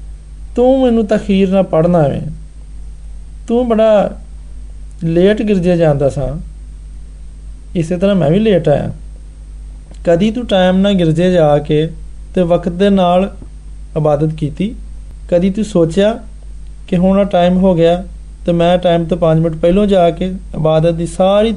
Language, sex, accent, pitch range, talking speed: Hindi, male, native, 150-185 Hz, 135 wpm